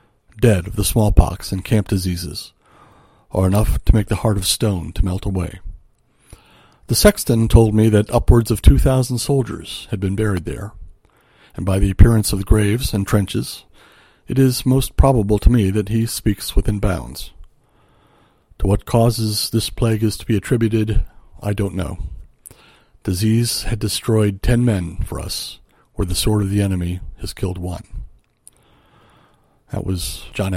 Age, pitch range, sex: 60-79, 95-115 Hz, male